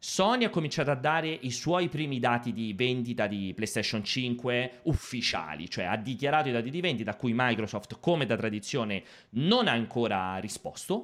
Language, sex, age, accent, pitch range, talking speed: Italian, male, 30-49, native, 110-160 Hz, 175 wpm